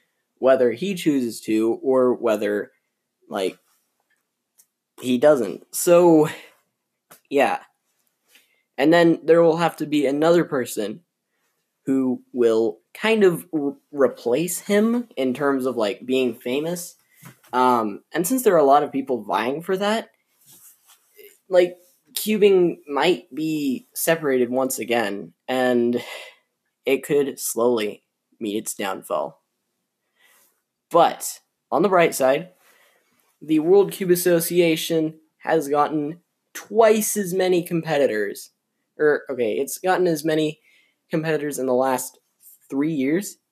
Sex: male